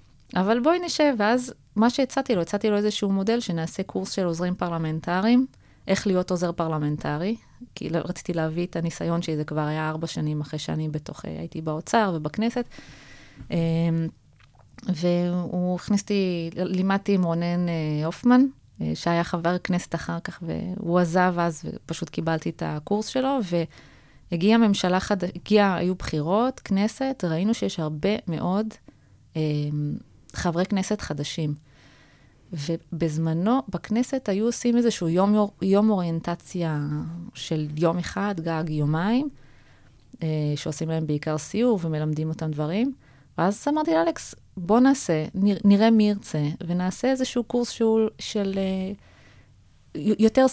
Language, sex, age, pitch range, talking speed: Hebrew, female, 20-39, 165-210 Hz, 130 wpm